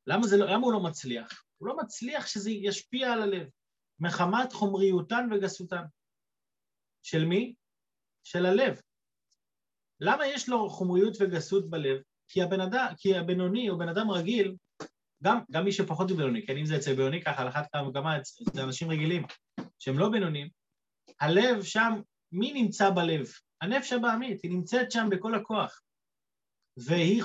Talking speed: 145 wpm